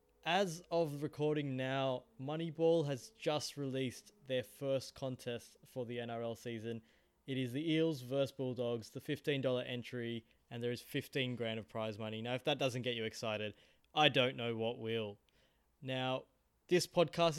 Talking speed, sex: 165 wpm, male